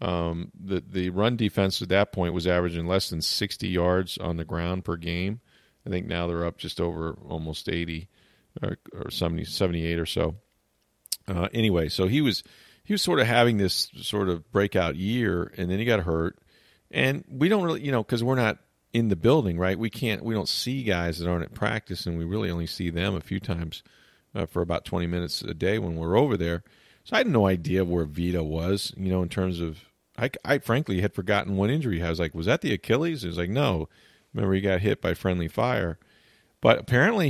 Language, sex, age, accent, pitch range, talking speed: English, male, 40-59, American, 90-120 Hz, 220 wpm